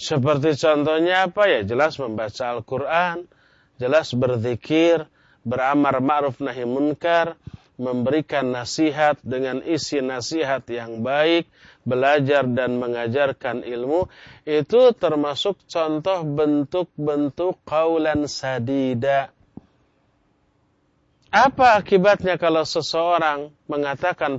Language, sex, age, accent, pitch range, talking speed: Indonesian, male, 30-49, native, 130-185 Hz, 85 wpm